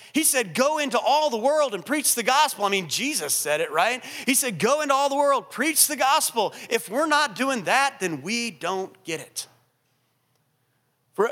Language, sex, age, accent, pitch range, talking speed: English, male, 30-49, American, 160-235 Hz, 200 wpm